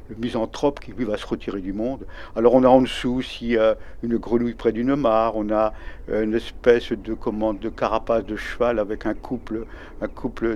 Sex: male